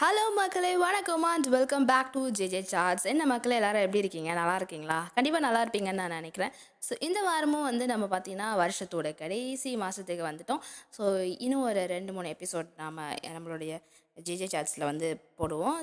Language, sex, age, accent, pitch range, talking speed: Tamil, female, 20-39, native, 170-265 Hz, 165 wpm